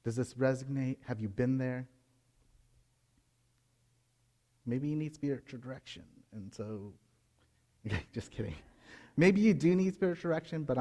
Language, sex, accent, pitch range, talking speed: English, male, American, 115-145 Hz, 135 wpm